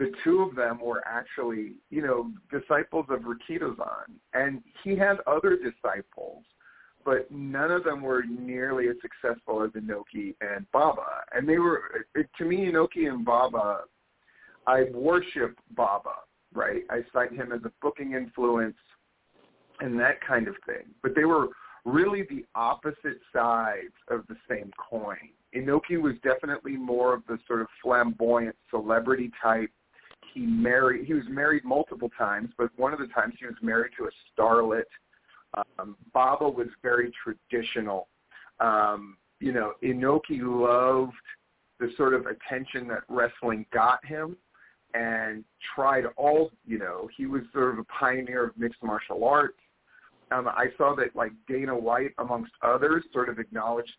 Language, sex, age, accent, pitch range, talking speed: English, male, 50-69, American, 120-155 Hz, 150 wpm